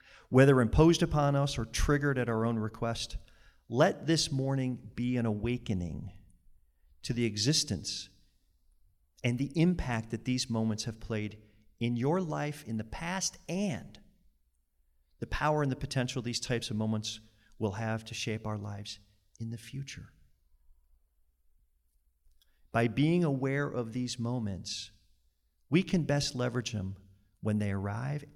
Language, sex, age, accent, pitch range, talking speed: English, male, 40-59, American, 90-135 Hz, 140 wpm